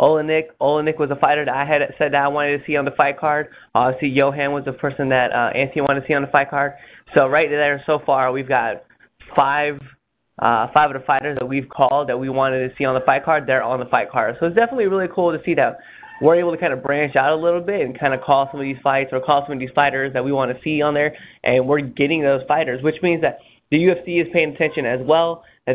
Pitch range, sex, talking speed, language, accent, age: 130-155 Hz, male, 280 wpm, English, American, 20-39